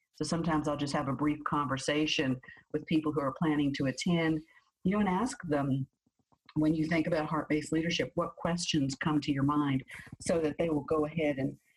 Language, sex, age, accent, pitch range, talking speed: English, female, 50-69, American, 140-165 Hz, 200 wpm